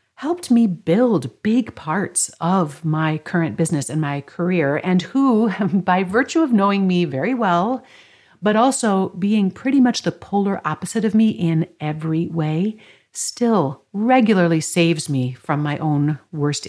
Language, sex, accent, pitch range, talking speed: English, female, American, 155-205 Hz, 150 wpm